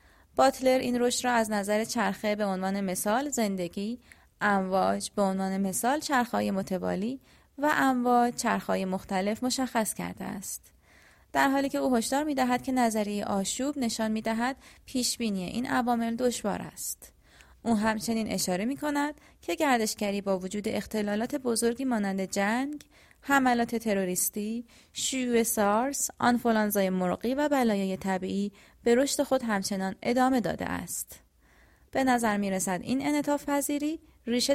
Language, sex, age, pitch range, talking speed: Persian, female, 30-49, 200-265 Hz, 135 wpm